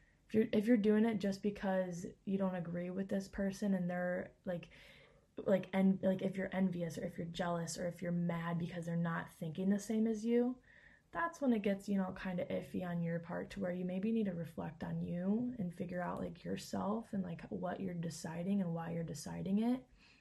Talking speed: 215 wpm